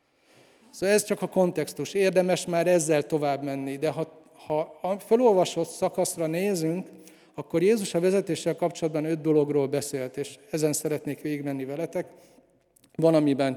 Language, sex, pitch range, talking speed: Hungarian, male, 140-170 Hz, 135 wpm